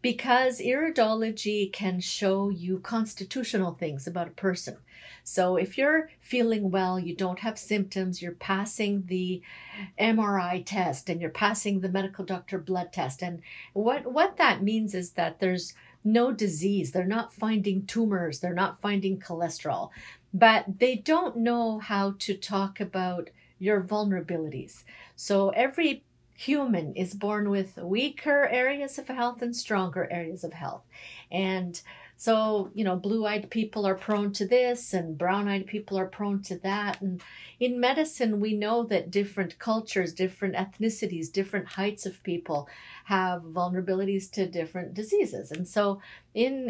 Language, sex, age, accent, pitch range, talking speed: English, female, 50-69, American, 180-220 Hz, 145 wpm